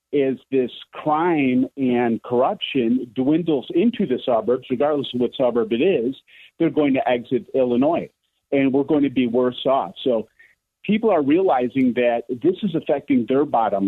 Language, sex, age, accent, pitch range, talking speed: English, male, 50-69, American, 125-175 Hz, 160 wpm